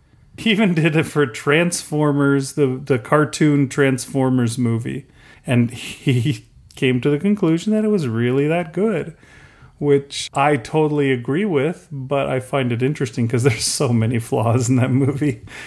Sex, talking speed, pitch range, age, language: male, 155 wpm, 125-145 Hz, 30-49, English